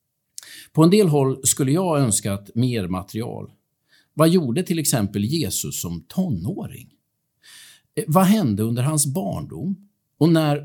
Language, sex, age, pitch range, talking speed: Swedish, male, 50-69, 110-165 Hz, 135 wpm